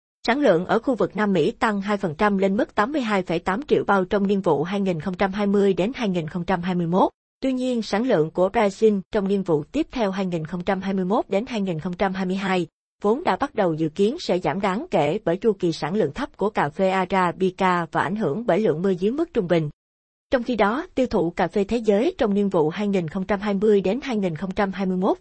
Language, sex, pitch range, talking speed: Vietnamese, female, 180-215 Hz, 190 wpm